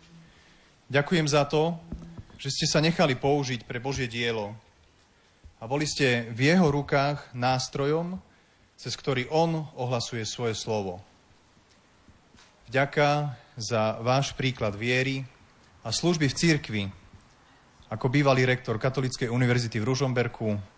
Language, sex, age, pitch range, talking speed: Slovak, male, 30-49, 115-145 Hz, 115 wpm